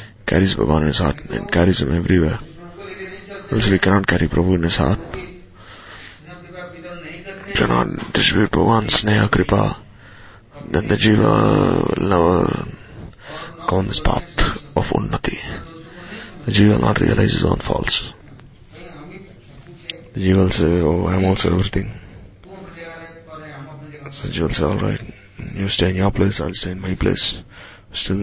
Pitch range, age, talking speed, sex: 90-135 Hz, 20-39, 140 wpm, male